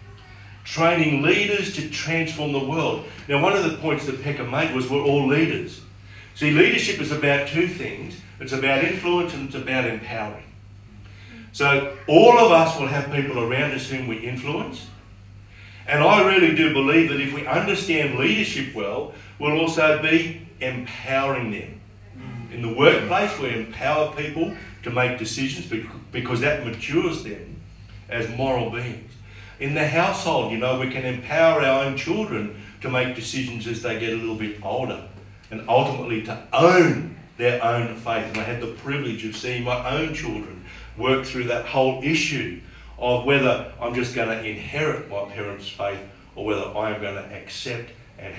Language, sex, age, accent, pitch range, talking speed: English, male, 50-69, Australian, 105-145 Hz, 165 wpm